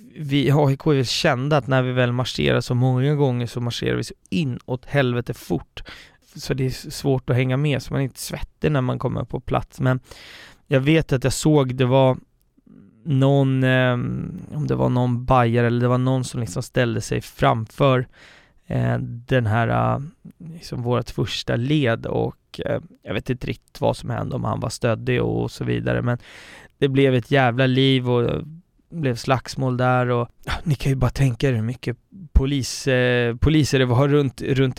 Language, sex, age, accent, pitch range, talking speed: Swedish, male, 20-39, native, 120-140 Hz, 185 wpm